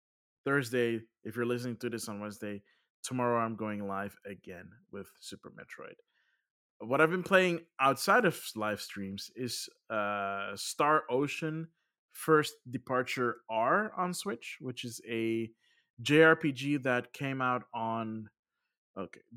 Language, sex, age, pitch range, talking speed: English, male, 20-39, 115-145 Hz, 130 wpm